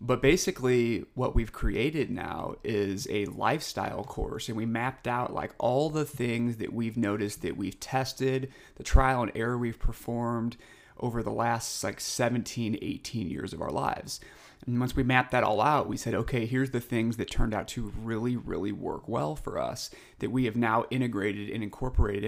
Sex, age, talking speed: male, 30-49, 190 wpm